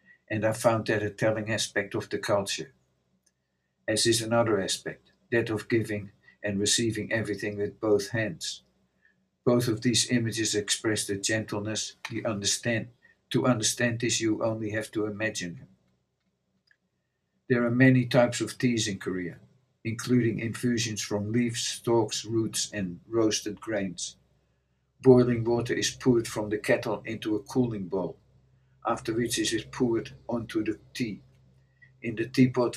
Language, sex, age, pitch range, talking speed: English, male, 50-69, 105-120 Hz, 145 wpm